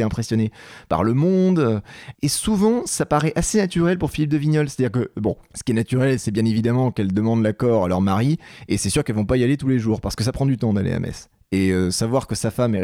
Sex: male